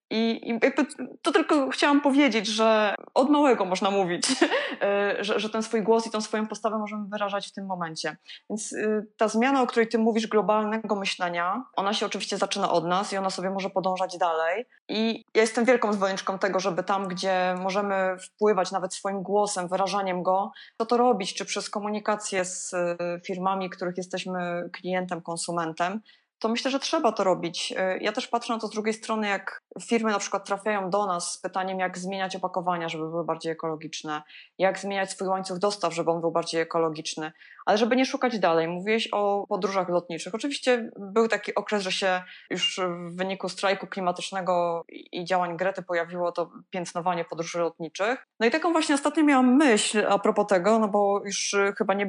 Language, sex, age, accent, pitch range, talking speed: Polish, female, 20-39, native, 180-220 Hz, 180 wpm